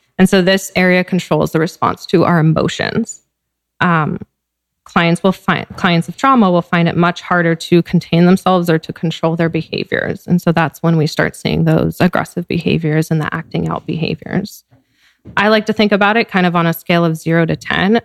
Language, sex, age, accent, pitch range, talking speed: English, female, 20-39, American, 155-180 Hz, 200 wpm